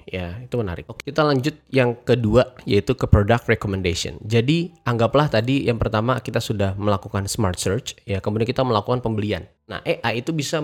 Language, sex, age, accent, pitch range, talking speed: Indonesian, male, 20-39, native, 100-125 Hz, 175 wpm